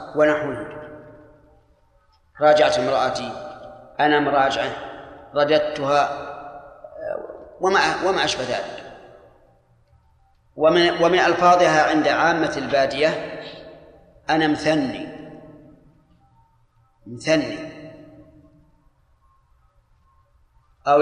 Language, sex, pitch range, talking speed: Arabic, male, 150-175 Hz, 55 wpm